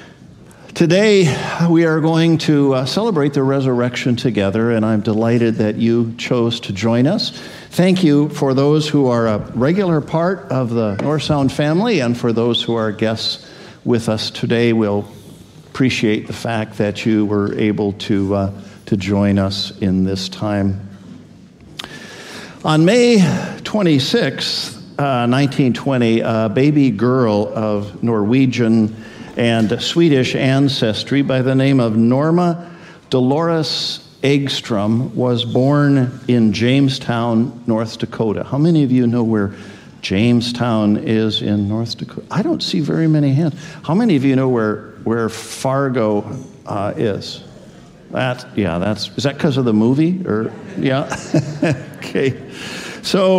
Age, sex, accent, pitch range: 50-69, male, American, 115-150 Hz